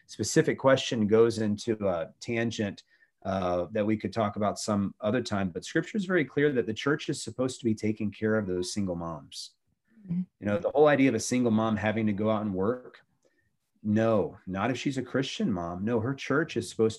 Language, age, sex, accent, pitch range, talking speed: English, 30-49, male, American, 100-125 Hz, 210 wpm